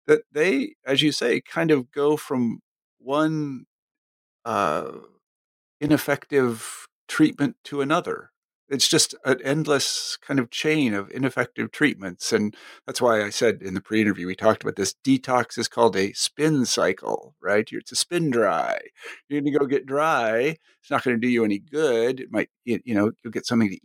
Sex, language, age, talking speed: male, English, 50-69, 180 wpm